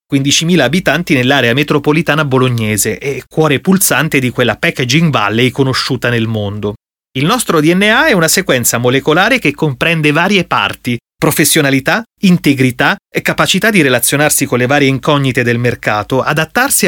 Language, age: Italian, 30-49